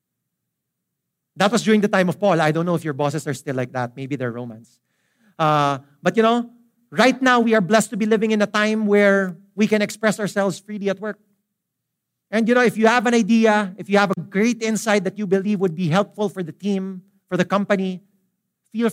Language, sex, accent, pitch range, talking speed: English, male, Filipino, 150-210 Hz, 220 wpm